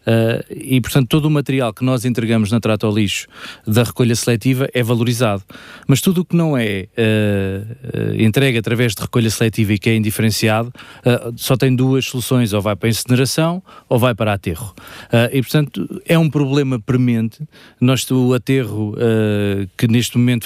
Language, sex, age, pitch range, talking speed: Portuguese, male, 20-39, 110-130 Hz, 180 wpm